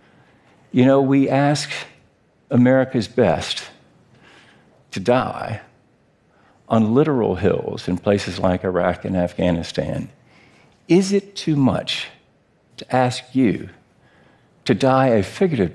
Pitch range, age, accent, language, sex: 105-135 Hz, 50-69, American, Korean, male